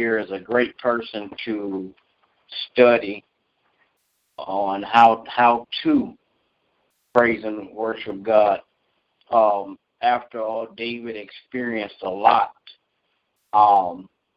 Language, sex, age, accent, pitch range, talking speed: English, male, 50-69, American, 105-120 Hz, 90 wpm